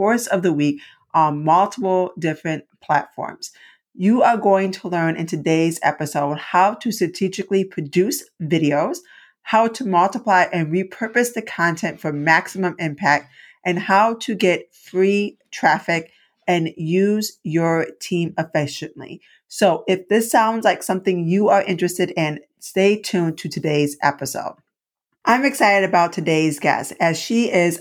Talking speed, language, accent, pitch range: 140 wpm, English, American, 165-195 Hz